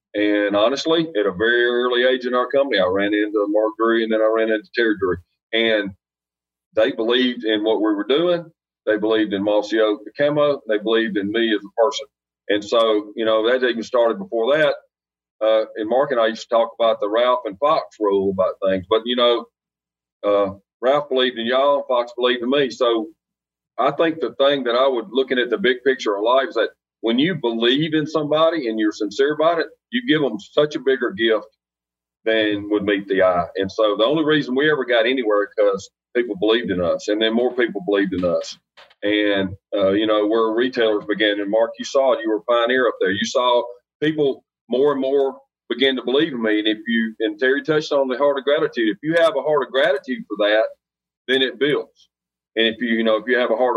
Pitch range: 105-135 Hz